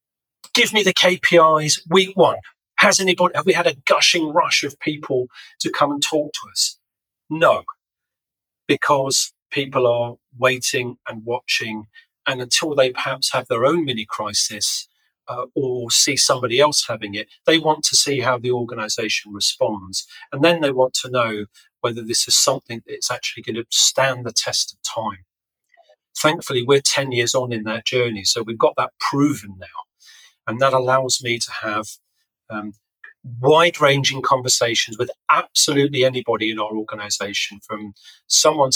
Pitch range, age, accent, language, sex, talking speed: 115-155 Hz, 40-59, British, English, male, 160 wpm